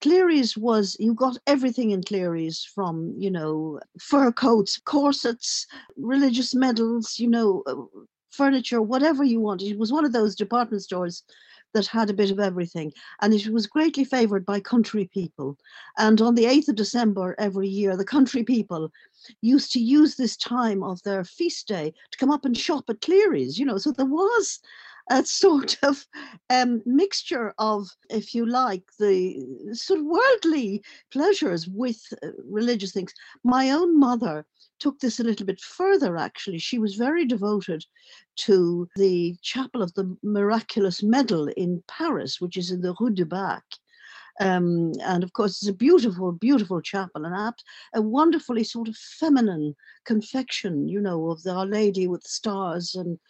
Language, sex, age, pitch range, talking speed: English, female, 50-69, 190-265 Hz, 165 wpm